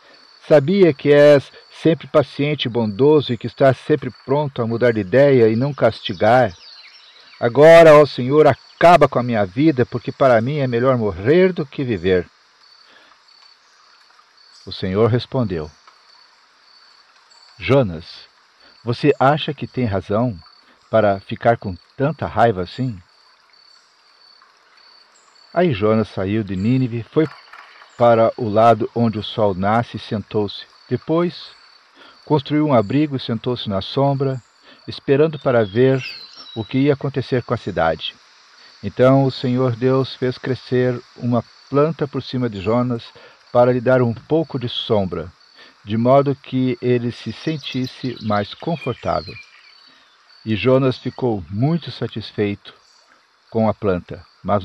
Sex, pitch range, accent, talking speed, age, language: male, 110-140 Hz, Brazilian, 135 wpm, 50-69, Portuguese